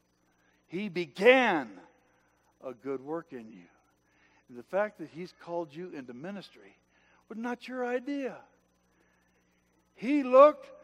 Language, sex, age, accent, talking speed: English, male, 60-79, American, 125 wpm